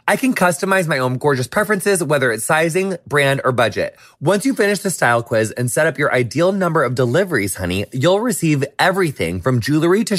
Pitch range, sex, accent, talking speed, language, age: 130-195 Hz, male, American, 200 wpm, English, 30-49